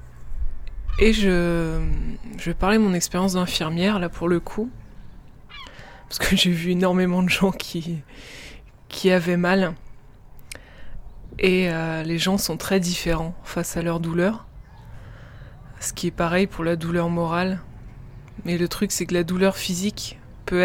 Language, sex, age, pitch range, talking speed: French, female, 20-39, 135-190 Hz, 150 wpm